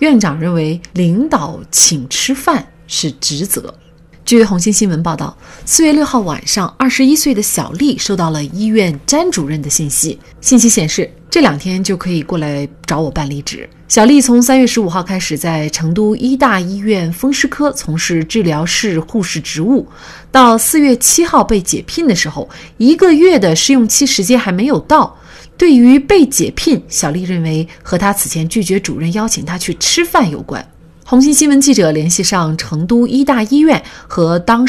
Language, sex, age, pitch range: Chinese, female, 30-49, 165-250 Hz